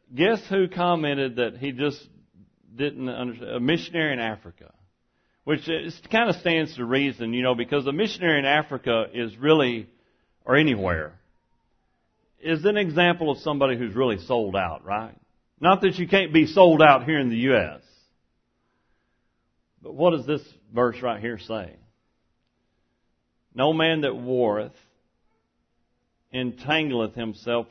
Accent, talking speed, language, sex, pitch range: American, 140 wpm, English, male, 115-150 Hz